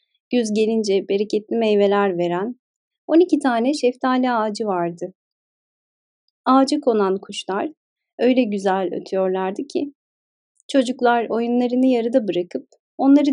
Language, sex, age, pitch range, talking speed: Turkish, female, 30-49, 195-270 Hz, 105 wpm